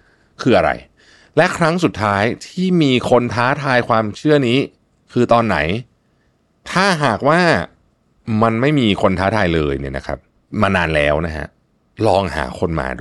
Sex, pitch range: male, 85-115 Hz